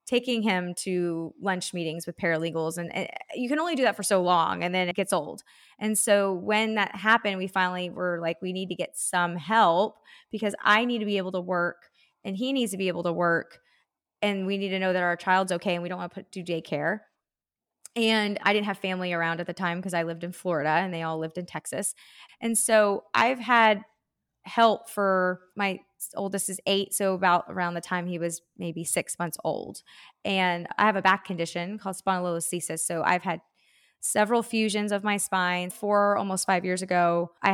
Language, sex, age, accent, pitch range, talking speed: English, female, 20-39, American, 175-210 Hz, 210 wpm